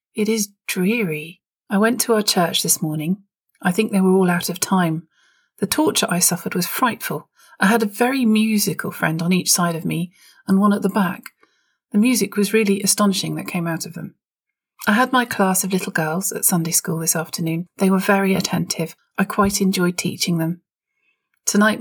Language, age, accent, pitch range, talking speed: English, 40-59, British, 175-210 Hz, 200 wpm